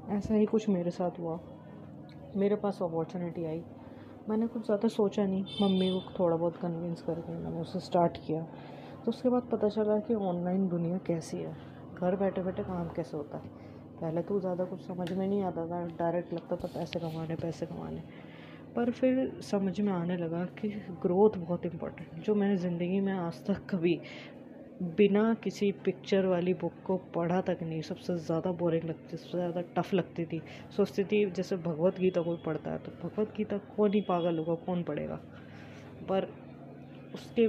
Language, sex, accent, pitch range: Hindi, female, native, 165-200 Hz